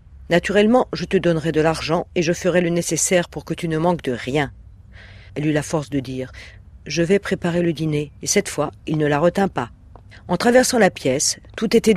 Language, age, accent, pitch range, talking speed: French, 50-69, French, 130-180 Hz, 215 wpm